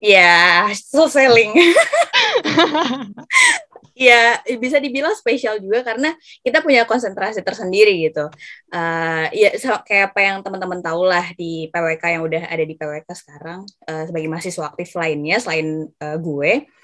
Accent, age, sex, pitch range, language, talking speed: native, 20-39, female, 165-210 Hz, Indonesian, 150 wpm